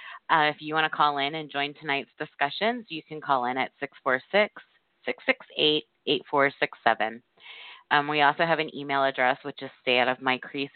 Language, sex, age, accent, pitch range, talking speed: English, female, 30-49, American, 125-170 Hz, 155 wpm